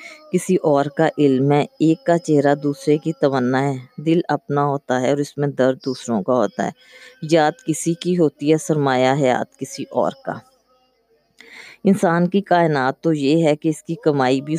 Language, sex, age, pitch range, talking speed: Urdu, female, 20-39, 135-170 Hz, 190 wpm